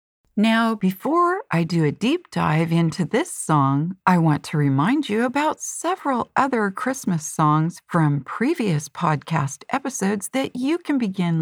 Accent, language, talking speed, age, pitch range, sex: American, English, 145 wpm, 50-69, 160-260 Hz, female